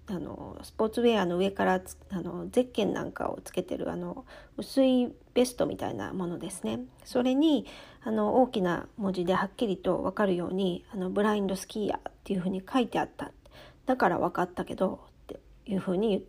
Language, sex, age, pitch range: Japanese, female, 40-59, 185-245 Hz